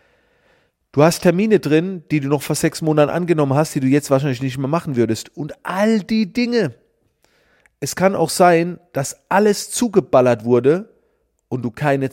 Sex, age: male, 40-59